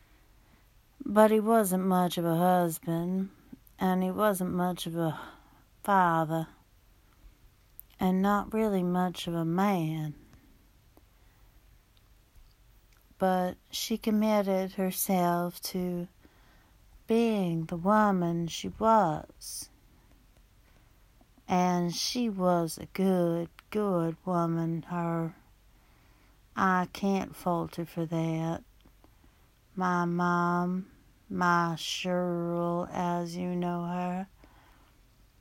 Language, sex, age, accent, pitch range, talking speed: English, female, 60-79, American, 160-185 Hz, 90 wpm